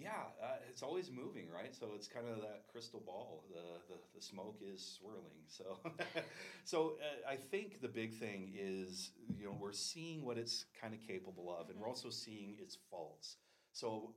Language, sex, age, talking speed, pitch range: English, male, 30-49, 190 wpm, 90-115 Hz